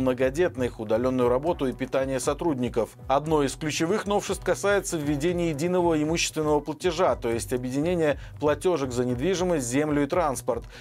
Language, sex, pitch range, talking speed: Russian, male, 135-175 Hz, 135 wpm